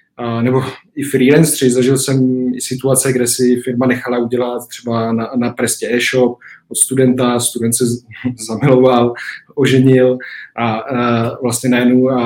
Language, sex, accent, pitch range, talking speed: Czech, male, native, 115-130 Hz, 130 wpm